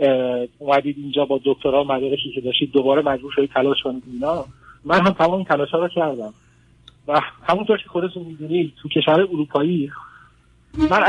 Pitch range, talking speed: 130-170 Hz, 150 wpm